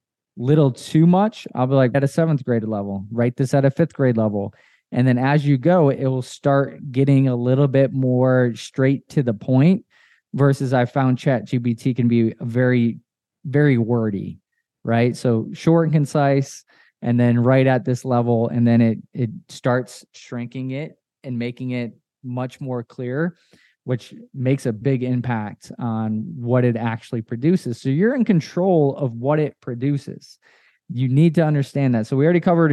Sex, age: male, 20-39